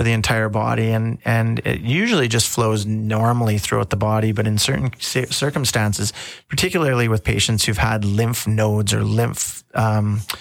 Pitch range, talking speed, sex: 110-120 Hz, 155 wpm, male